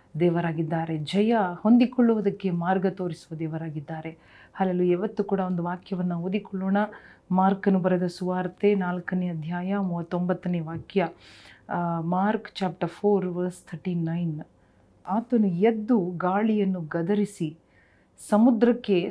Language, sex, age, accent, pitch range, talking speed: Kannada, female, 40-59, native, 180-225 Hz, 90 wpm